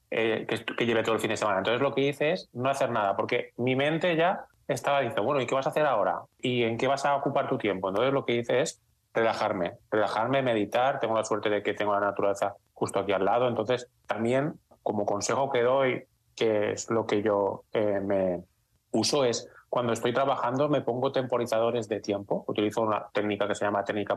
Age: 20-39